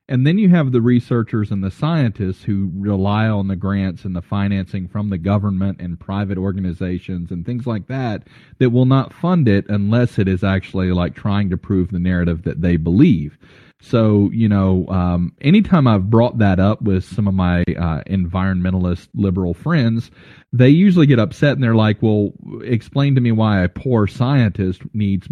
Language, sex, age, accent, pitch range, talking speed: English, male, 40-59, American, 95-115 Hz, 185 wpm